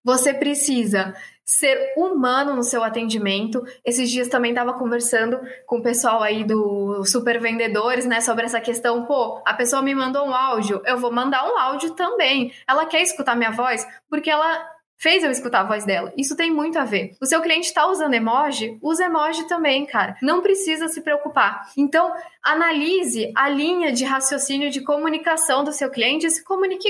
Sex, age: female, 10-29